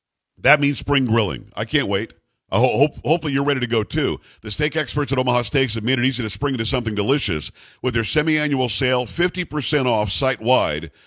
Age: 50-69